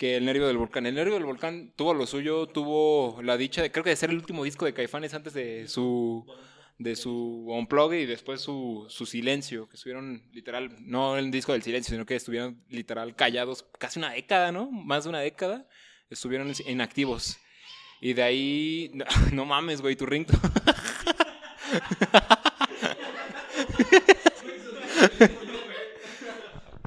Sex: male